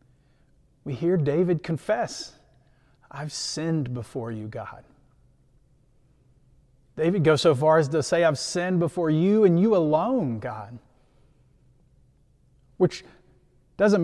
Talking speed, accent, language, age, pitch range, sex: 110 wpm, American, English, 30-49, 130-165 Hz, male